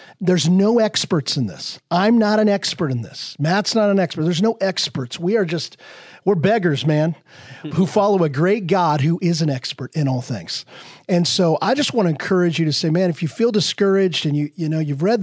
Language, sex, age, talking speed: English, male, 40-59, 225 wpm